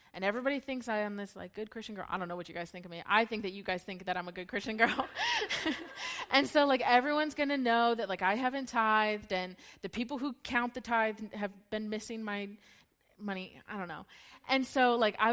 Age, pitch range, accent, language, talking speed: 20-39, 200-255 Hz, American, English, 245 wpm